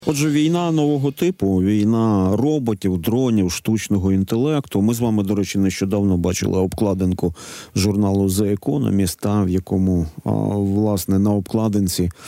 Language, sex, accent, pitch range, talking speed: Ukrainian, male, native, 100-120 Hz, 130 wpm